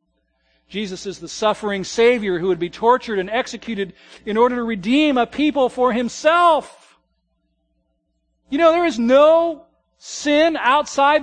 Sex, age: male, 40-59